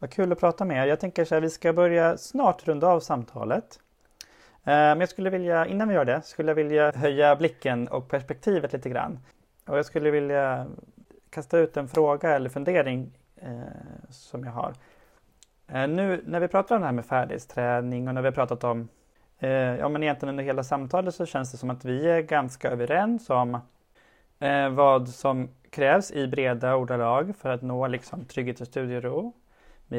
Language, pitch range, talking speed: Swedish, 125-160 Hz, 190 wpm